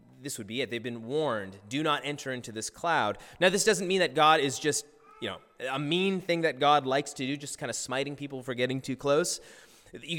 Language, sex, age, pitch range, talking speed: English, male, 30-49, 135-190 Hz, 240 wpm